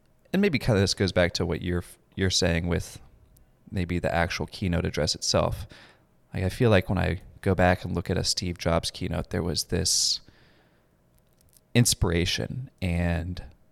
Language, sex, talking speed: English, male, 170 wpm